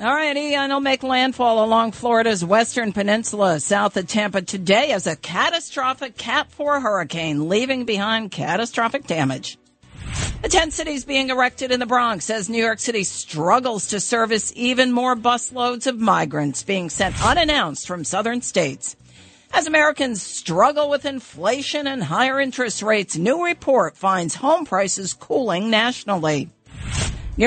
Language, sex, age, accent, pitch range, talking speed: English, female, 50-69, American, 195-255 Hz, 145 wpm